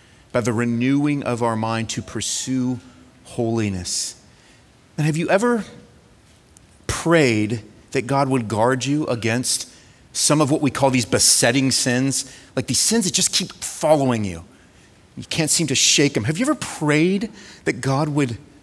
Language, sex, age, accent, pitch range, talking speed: English, male, 30-49, American, 130-190 Hz, 160 wpm